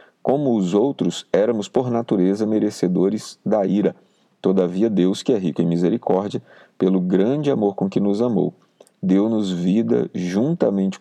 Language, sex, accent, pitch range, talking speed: Portuguese, male, Brazilian, 95-120 Hz, 140 wpm